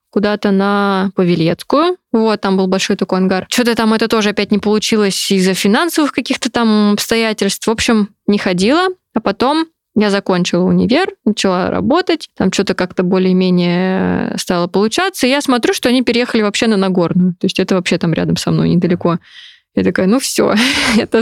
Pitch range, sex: 185-220 Hz, female